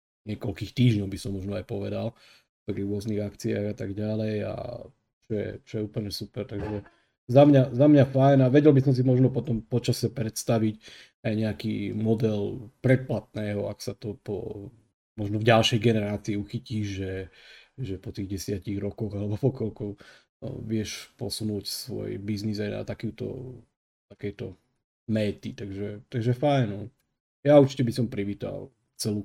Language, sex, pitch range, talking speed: Slovak, male, 100-120 Hz, 155 wpm